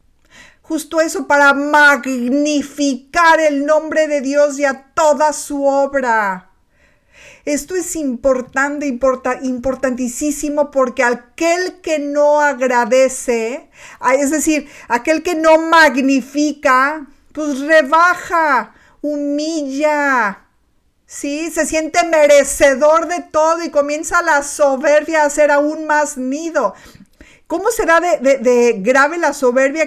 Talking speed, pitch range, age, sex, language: 110 wpm, 270-320 Hz, 50-69, female, Spanish